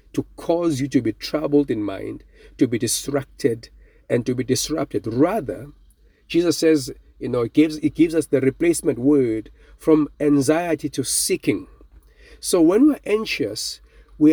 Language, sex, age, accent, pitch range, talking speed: English, male, 50-69, South African, 130-190 Hz, 155 wpm